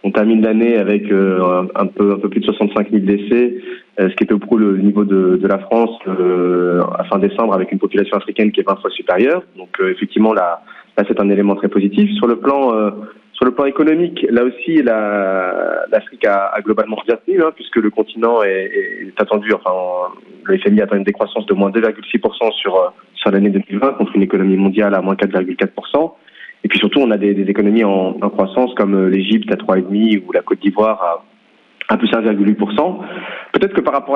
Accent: French